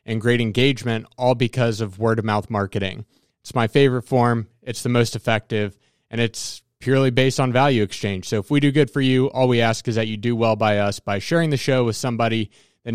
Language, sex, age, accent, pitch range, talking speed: English, male, 20-39, American, 110-130 Hz, 225 wpm